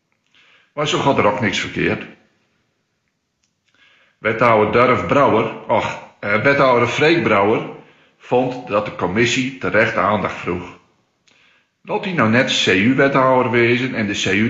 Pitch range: 90-125 Hz